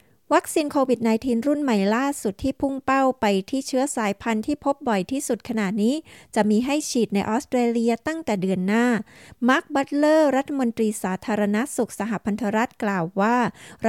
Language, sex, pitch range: Thai, female, 205-250 Hz